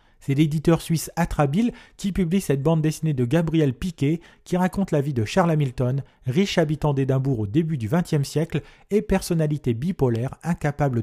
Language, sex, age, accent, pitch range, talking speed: French, male, 40-59, French, 130-170 Hz, 170 wpm